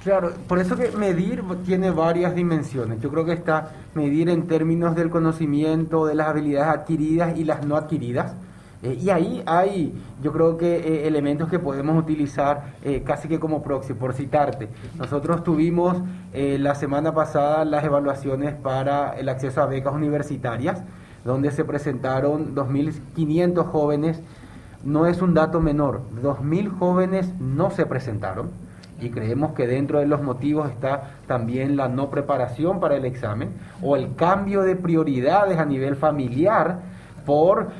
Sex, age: male, 30-49